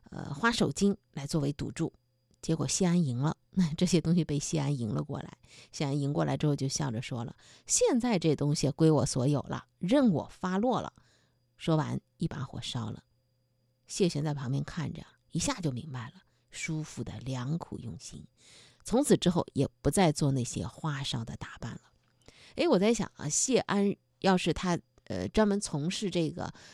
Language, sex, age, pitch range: Chinese, female, 50-69, 125-175 Hz